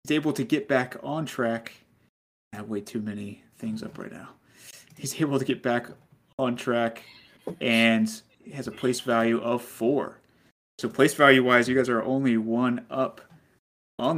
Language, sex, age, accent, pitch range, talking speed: English, male, 30-49, American, 115-135 Hz, 170 wpm